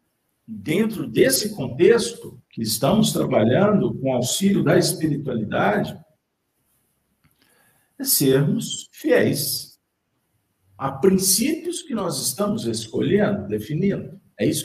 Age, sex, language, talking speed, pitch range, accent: 50-69, male, Portuguese, 95 wpm, 130-215 Hz, Brazilian